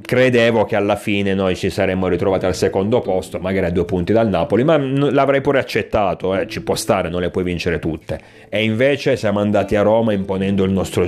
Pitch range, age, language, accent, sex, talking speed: 95-110 Hz, 30-49, Italian, native, male, 210 wpm